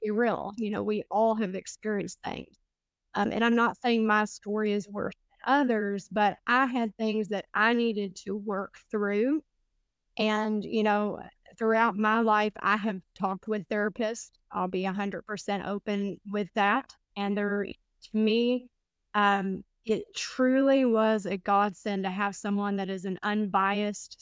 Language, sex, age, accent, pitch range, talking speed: English, female, 20-39, American, 200-230 Hz, 155 wpm